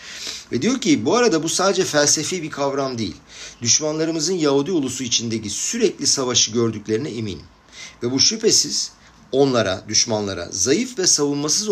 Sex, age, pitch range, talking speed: male, 50-69, 110-145 Hz, 140 wpm